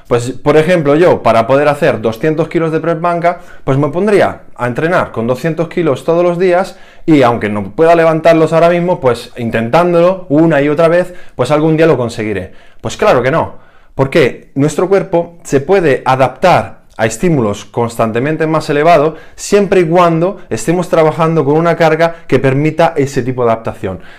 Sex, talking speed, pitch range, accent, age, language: male, 175 wpm, 120-165 Hz, Spanish, 20-39, Spanish